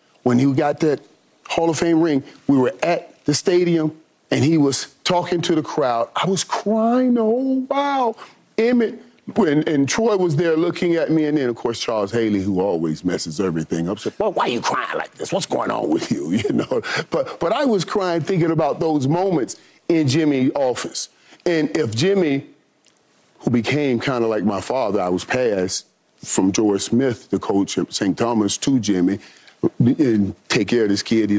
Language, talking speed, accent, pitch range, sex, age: English, 195 wpm, American, 110-165 Hz, male, 40-59